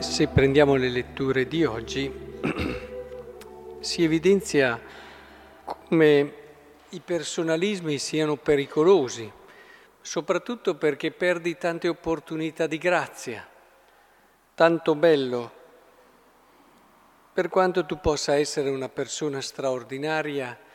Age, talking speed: 50-69, 85 wpm